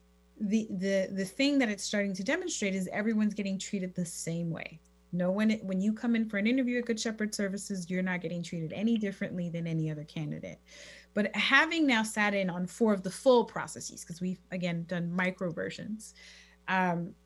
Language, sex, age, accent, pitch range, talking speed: English, female, 30-49, American, 170-215 Hz, 200 wpm